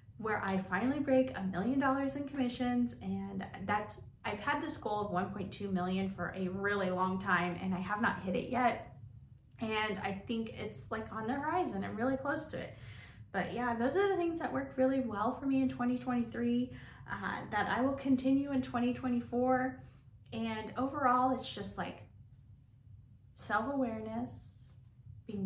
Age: 20-39